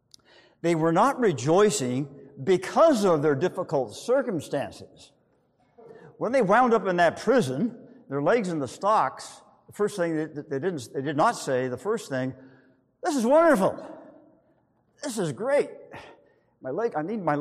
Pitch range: 135-205 Hz